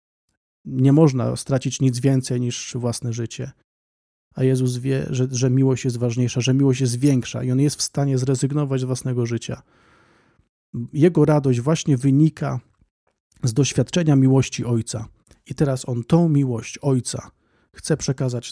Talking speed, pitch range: 145 wpm, 120-145 Hz